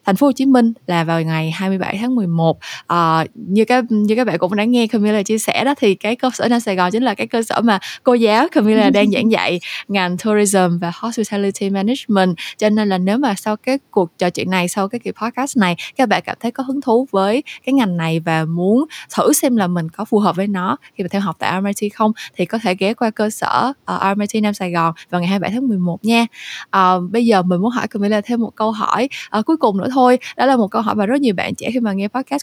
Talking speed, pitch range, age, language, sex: 260 wpm, 180-235 Hz, 20-39, Vietnamese, female